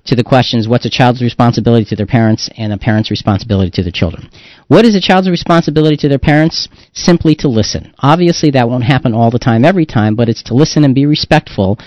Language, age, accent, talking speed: English, 40-59, American, 220 wpm